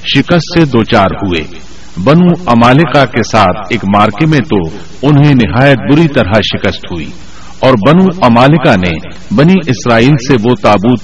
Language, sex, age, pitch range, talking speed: Urdu, male, 50-69, 110-150 Hz, 145 wpm